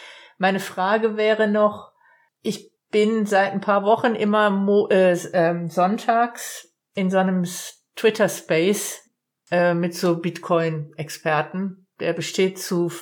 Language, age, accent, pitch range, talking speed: German, 50-69, German, 185-220 Hz, 110 wpm